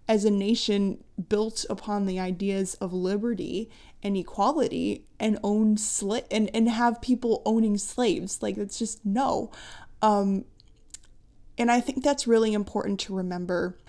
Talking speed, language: 145 wpm, English